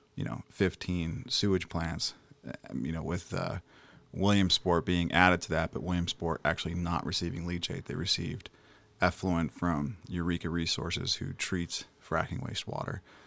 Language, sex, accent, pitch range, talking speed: English, male, American, 90-100 Hz, 135 wpm